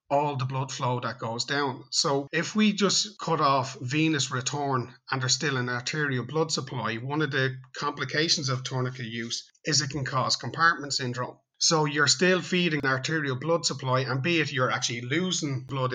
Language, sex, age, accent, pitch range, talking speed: English, male, 30-49, Irish, 125-150 Hz, 190 wpm